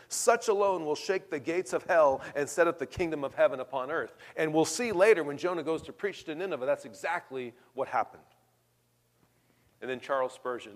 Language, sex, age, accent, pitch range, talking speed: English, male, 40-59, American, 135-200 Hz, 200 wpm